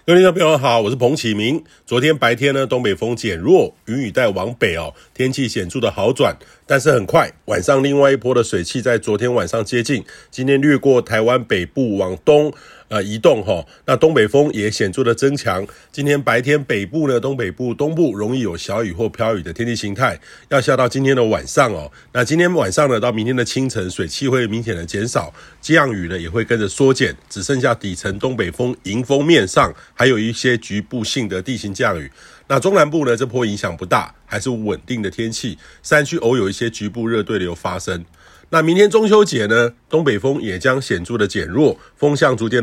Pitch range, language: 110-140 Hz, Chinese